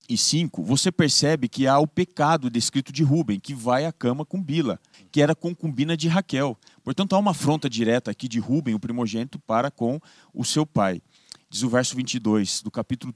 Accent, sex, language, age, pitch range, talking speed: Brazilian, male, Portuguese, 40-59, 120-165 Hz, 195 wpm